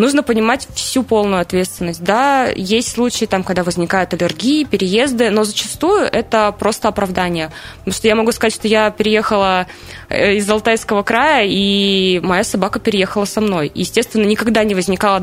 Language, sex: Russian, female